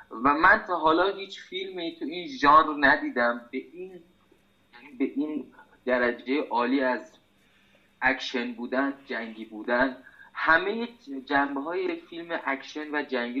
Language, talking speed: Persian, 135 wpm